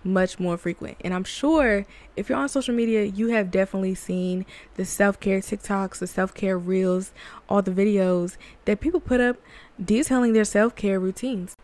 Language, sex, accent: English, female, American